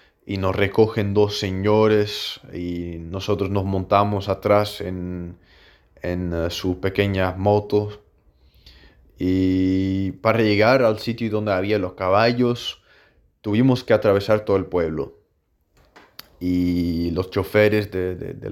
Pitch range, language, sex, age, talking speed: 95-110 Hz, Spanish, male, 20-39, 120 wpm